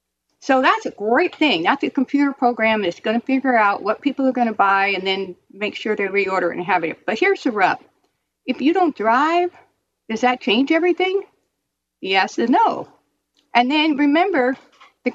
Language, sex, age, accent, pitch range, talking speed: English, female, 50-69, American, 200-295 Hz, 190 wpm